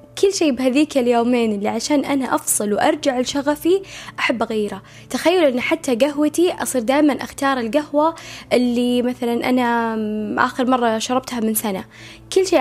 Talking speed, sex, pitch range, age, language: 145 wpm, female, 215-260 Hz, 10-29, Arabic